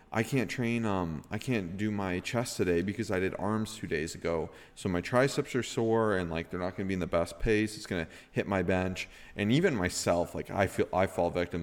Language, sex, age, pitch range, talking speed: English, male, 30-49, 85-100 Hz, 240 wpm